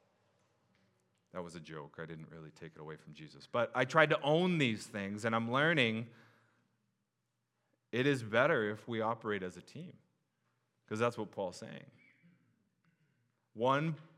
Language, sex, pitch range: English, male, 110-150 Hz